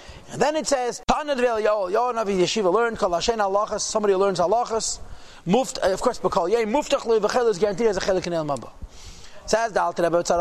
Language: English